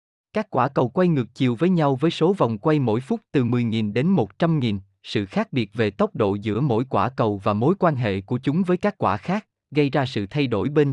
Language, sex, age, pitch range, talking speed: Vietnamese, male, 20-39, 110-155 Hz, 240 wpm